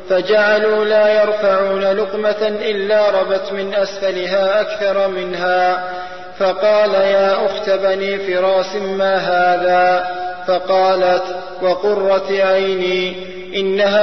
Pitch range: 185-200 Hz